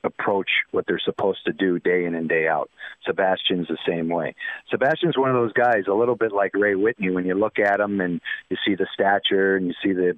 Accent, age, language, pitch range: American, 40-59, English, 95-105 Hz